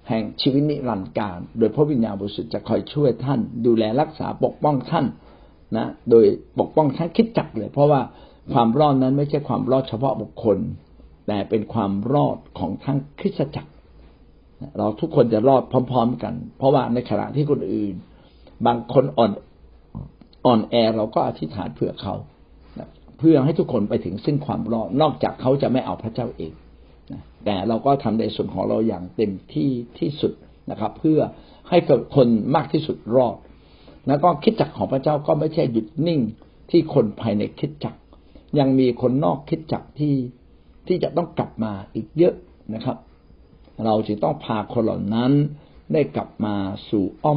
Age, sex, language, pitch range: 60-79, male, Thai, 105-145 Hz